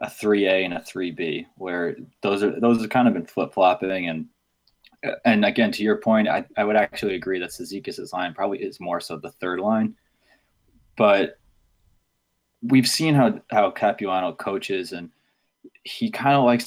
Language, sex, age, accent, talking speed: English, male, 20-39, American, 180 wpm